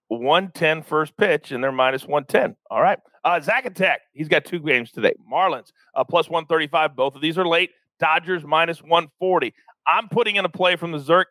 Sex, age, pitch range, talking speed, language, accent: male, 40-59, 155-200 Hz, 195 wpm, English, American